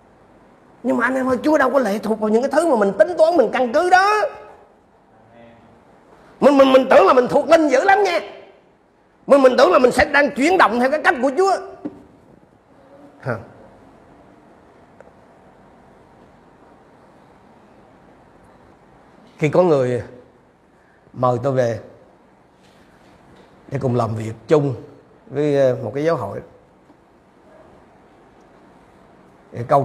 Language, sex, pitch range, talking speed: Vietnamese, male, 125-205 Hz, 130 wpm